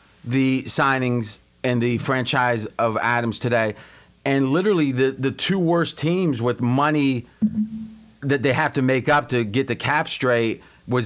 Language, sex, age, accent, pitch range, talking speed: English, male, 40-59, American, 115-145 Hz, 155 wpm